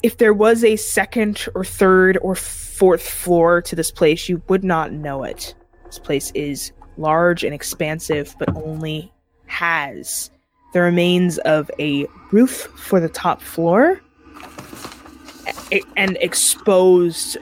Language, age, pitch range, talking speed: English, 20-39, 170-230 Hz, 130 wpm